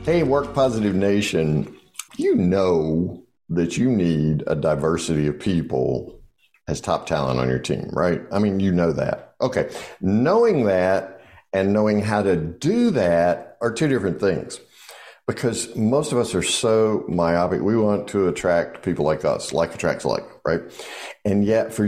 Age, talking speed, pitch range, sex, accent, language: 60-79, 160 wpm, 90-120 Hz, male, American, English